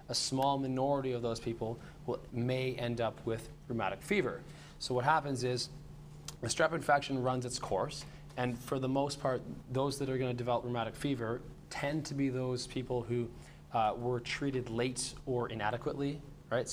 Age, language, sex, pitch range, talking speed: 20-39, English, male, 120-140 Hz, 175 wpm